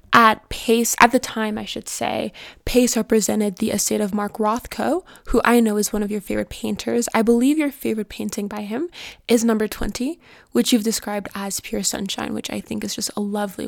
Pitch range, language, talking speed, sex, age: 210-245 Hz, English, 205 wpm, female, 10-29